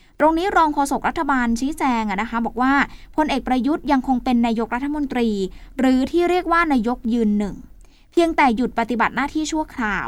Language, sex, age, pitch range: Thai, female, 20-39, 215-270 Hz